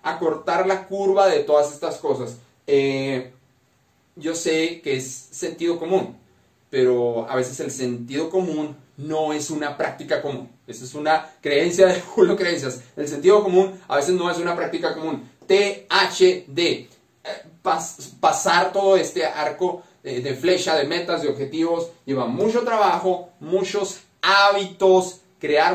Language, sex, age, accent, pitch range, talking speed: Spanish, male, 30-49, Mexican, 140-185 Hz, 140 wpm